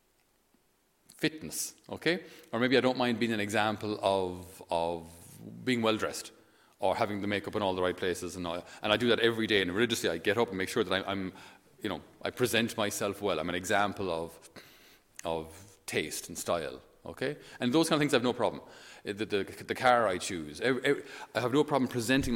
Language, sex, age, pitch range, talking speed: English, male, 30-49, 90-120 Hz, 205 wpm